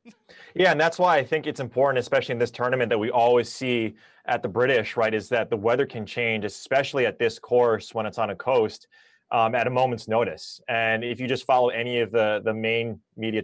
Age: 20-39